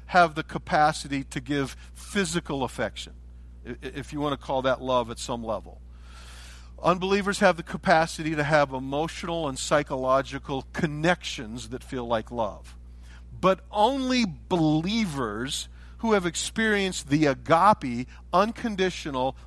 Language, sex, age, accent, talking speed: English, male, 50-69, American, 125 wpm